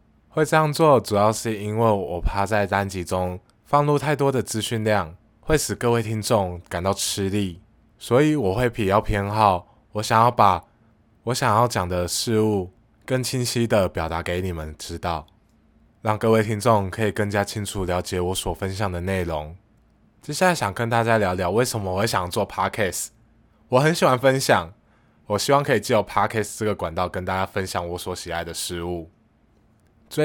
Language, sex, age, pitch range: Chinese, male, 20-39, 90-115 Hz